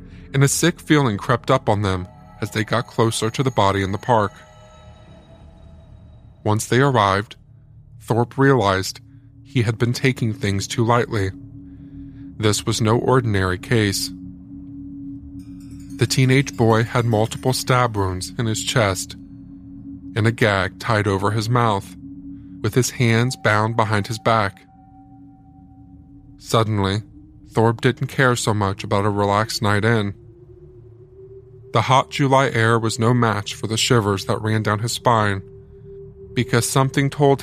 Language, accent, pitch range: English, American, 100-130 Hz